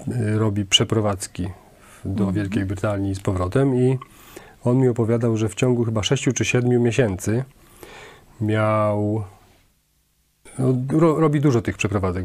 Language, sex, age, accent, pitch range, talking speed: Polish, male, 40-59, native, 100-120 Hz, 125 wpm